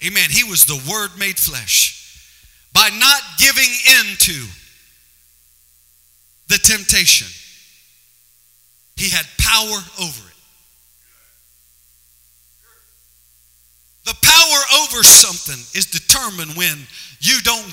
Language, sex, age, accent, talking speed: English, male, 50-69, American, 95 wpm